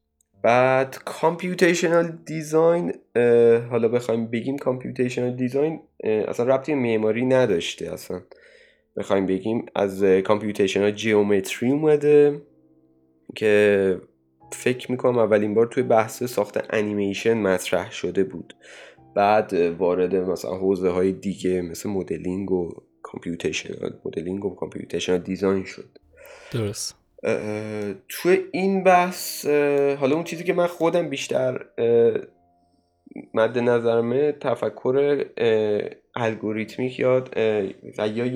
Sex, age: male, 20-39